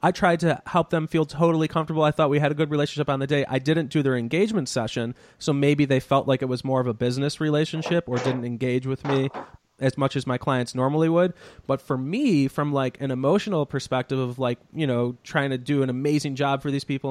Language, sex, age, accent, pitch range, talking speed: English, male, 20-39, American, 130-155 Hz, 240 wpm